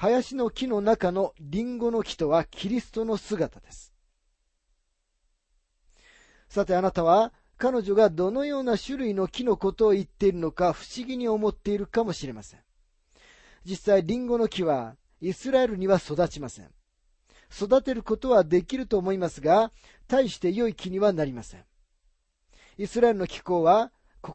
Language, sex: Japanese, male